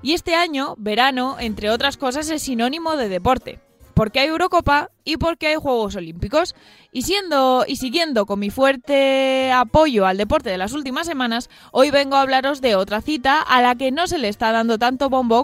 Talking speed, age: 195 wpm, 20-39